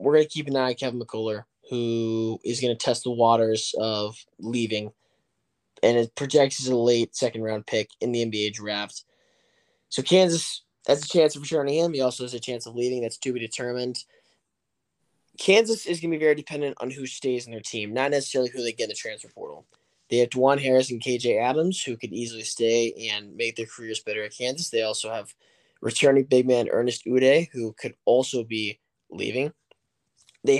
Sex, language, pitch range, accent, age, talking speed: male, English, 115-140 Hz, American, 20-39, 200 wpm